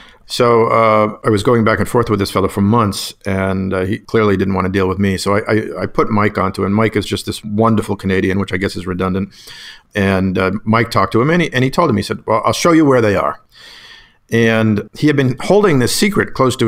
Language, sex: English, male